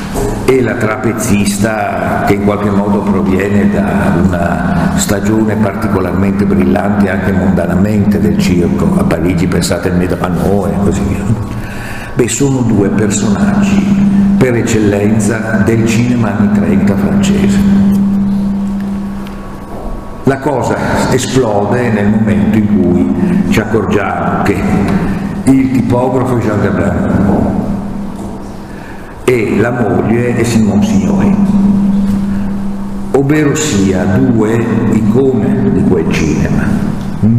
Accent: native